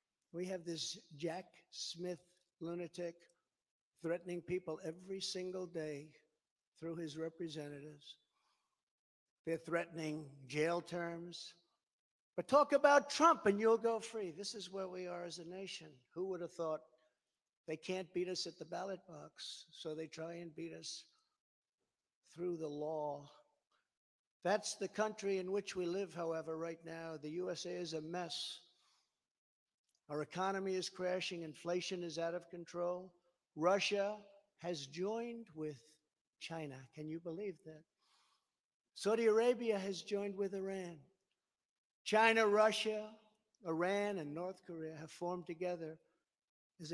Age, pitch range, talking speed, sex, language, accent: 60-79, 160-190 Hz, 135 wpm, male, English, American